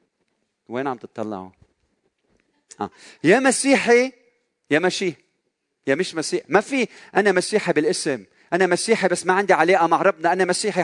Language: Arabic